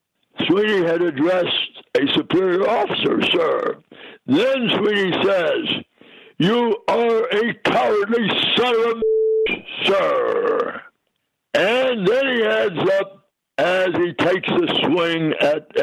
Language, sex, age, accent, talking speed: English, male, 60-79, American, 115 wpm